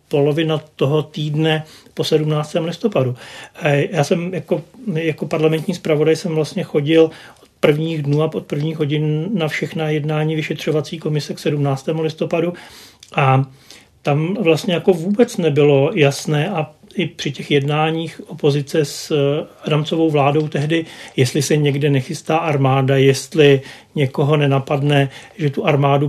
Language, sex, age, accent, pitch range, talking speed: Czech, male, 40-59, native, 145-165 Hz, 135 wpm